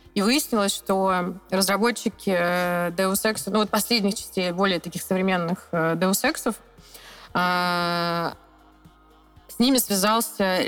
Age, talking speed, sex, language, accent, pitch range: 20-39, 100 wpm, female, Russian, native, 185-220 Hz